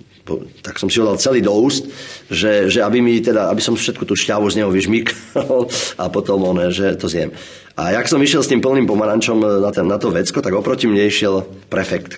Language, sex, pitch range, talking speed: Slovak, male, 90-110 Hz, 225 wpm